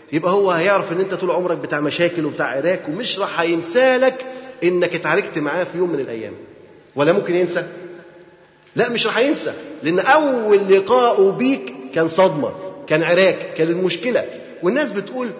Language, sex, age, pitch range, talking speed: Arabic, male, 30-49, 175-240 Hz, 160 wpm